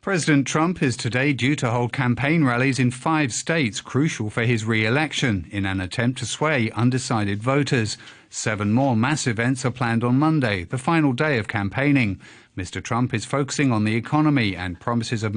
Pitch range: 115-145 Hz